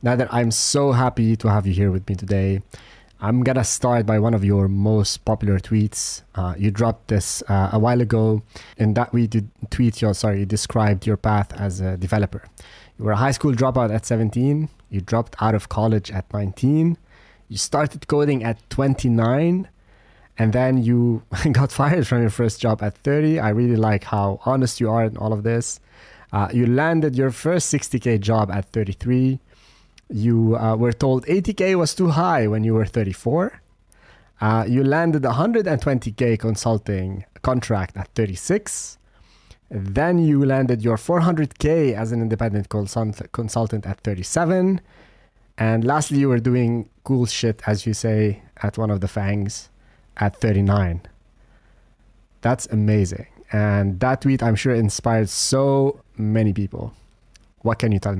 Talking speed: 165 wpm